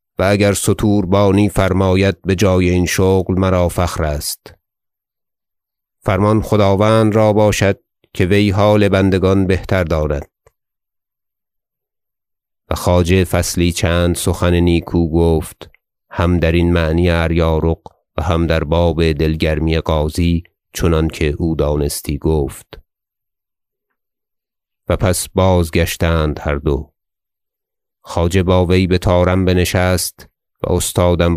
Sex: male